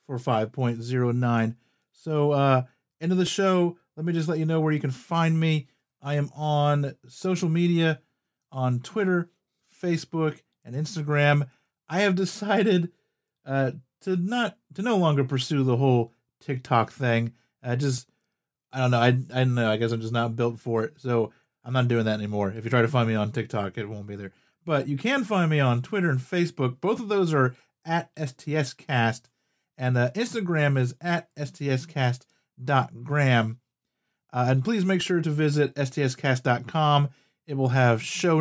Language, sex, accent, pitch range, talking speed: English, male, American, 120-155 Hz, 175 wpm